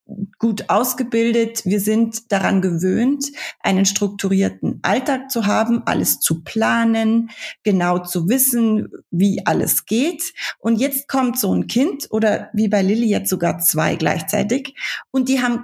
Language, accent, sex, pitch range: German, German, female, 205-255 Hz